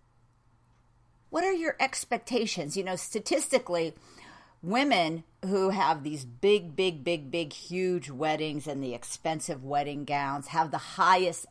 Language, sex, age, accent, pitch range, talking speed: English, female, 50-69, American, 125-190 Hz, 130 wpm